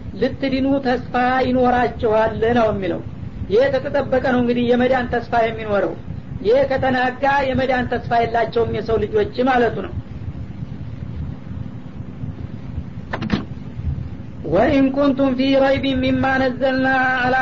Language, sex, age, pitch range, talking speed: Amharic, female, 40-59, 245-270 Hz, 105 wpm